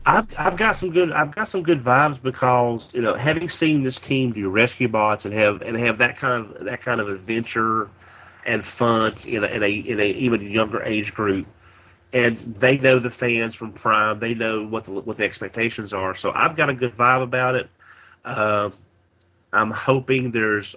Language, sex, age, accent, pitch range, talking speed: English, male, 30-49, American, 95-120 Hz, 200 wpm